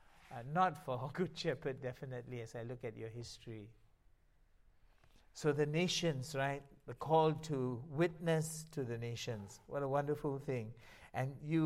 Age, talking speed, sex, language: 60-79, 150 wpm, male, English